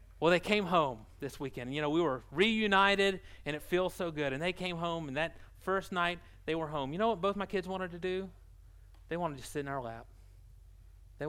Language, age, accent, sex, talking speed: English, 30-49, American, male, 235 wpm